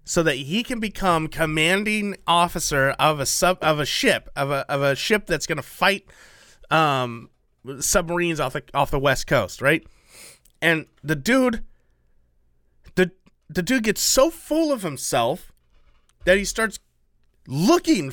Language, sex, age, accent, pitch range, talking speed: English, male, 30-49, American, 160-225 Hz, 150 wpm